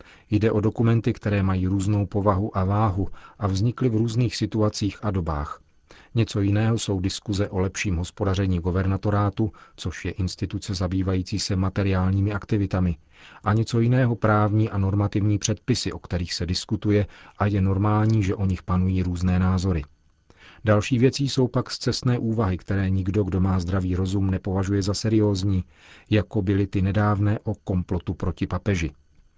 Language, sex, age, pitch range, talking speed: Czech, male, 40-59, 95-110 Hz, 150 wpm